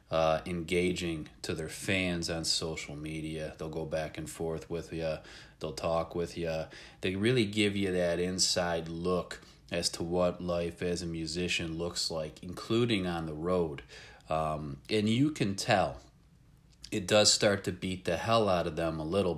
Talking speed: 175 wpm